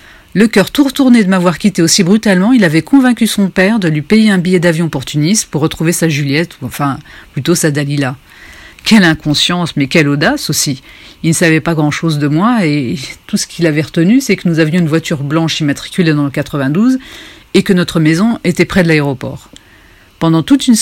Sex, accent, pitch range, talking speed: female, French, 150-195 Hz, 205 wpm